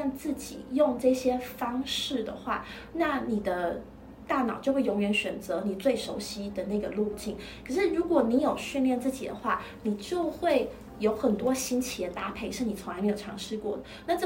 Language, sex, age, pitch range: Chinese, female, 20-39, 215-295 Hz